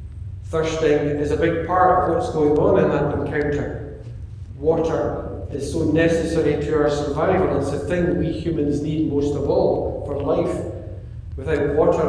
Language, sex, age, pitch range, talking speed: English, male, 60-79, 105-155 Hz, 160 wpm